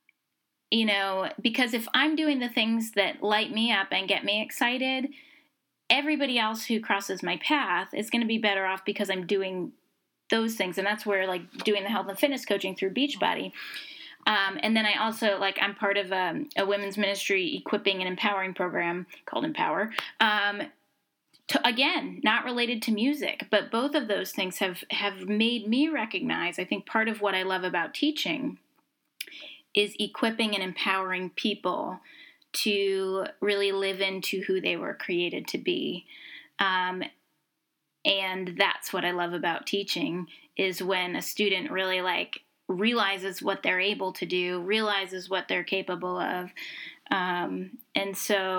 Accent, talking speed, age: American, 165 wpm, 10-29